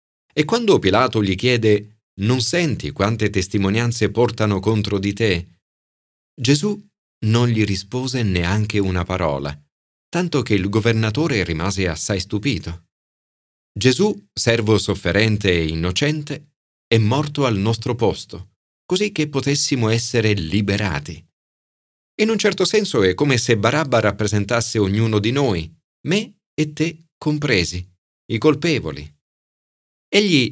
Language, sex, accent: Italian, male, native